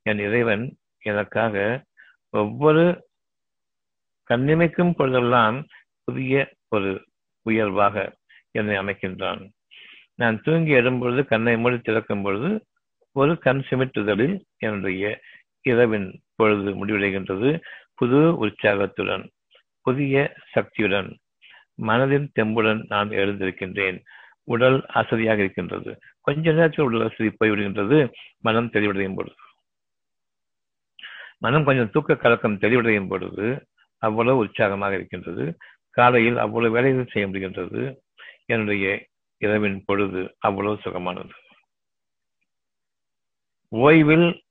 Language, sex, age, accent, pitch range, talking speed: Tamil, male, 50-69, native, 105-135 Hz, 90 wpm